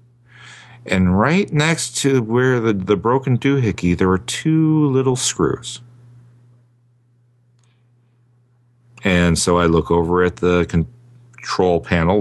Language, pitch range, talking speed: English, 100-120 Hz, 115 wpm